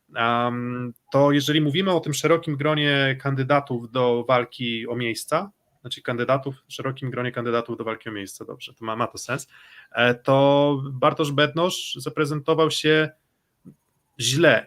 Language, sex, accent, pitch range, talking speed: Polish, male, native, 125-160 Hz, 140 wpm